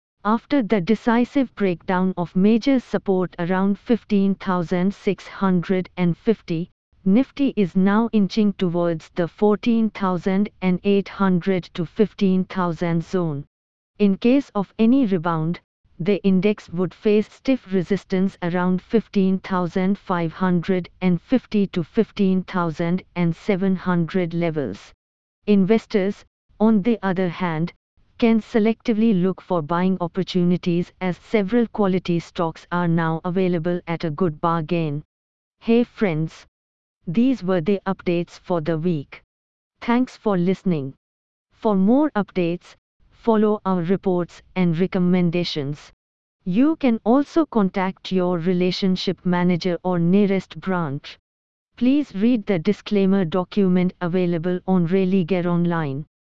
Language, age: English, 50-69